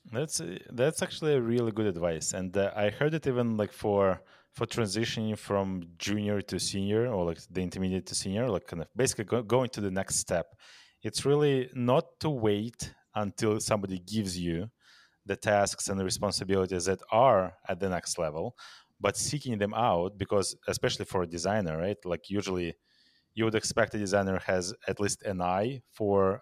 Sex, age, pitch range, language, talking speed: male, 30-49, 95-120 Hz, English, 185 wpm